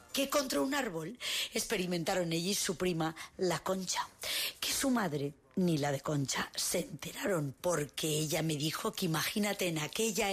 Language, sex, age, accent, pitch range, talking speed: Spanish, female, 40-59, Spanish, 160-205 Hz, 165 wpm